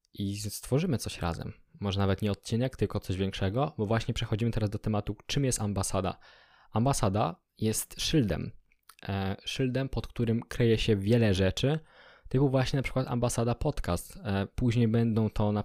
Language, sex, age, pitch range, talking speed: Polish, male, 20-39, 105-120 Hz, 155 wpm